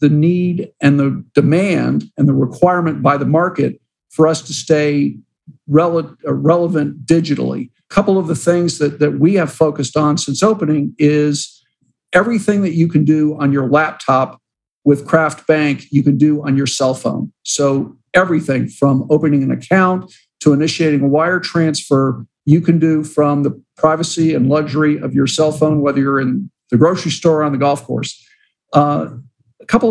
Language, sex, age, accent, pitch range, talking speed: English, male, 50-69, American, 140-165 Hz, 175 wpm